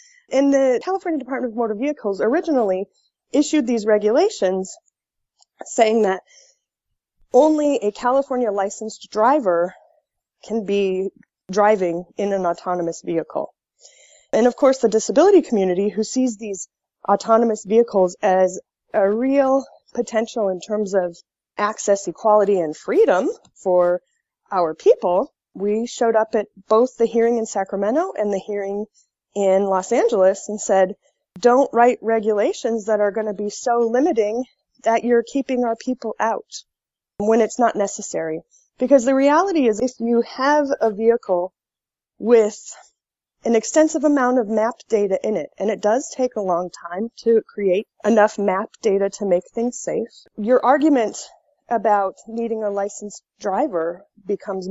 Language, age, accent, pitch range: English, 30-49, American, 200-255 Hz